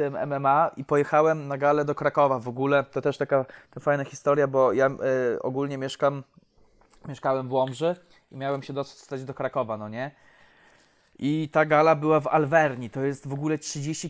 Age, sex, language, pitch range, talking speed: 20-39, male, Polish, 130-150 Hz, 180 wpm